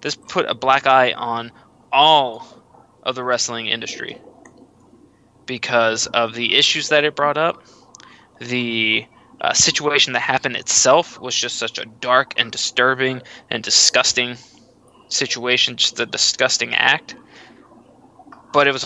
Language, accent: English, American